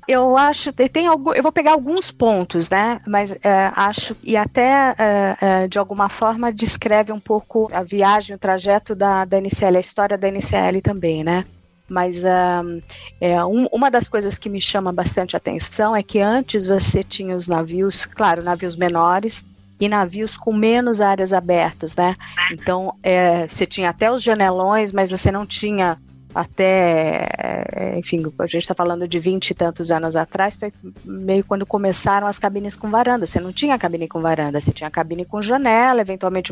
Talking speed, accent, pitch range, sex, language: 175 wpm, Brazilian, 175-215 Hz, female, Portuguese